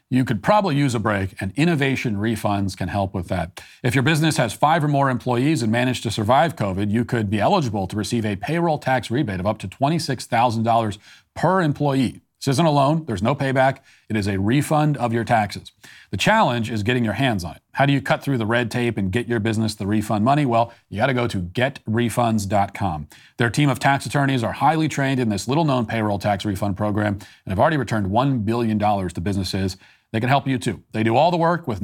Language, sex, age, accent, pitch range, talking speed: English, male, 40-59, American, 105-135 Hz, 225 wpm